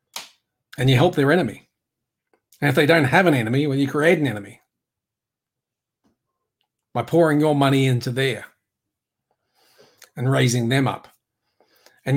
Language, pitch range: English, 120-145 Hz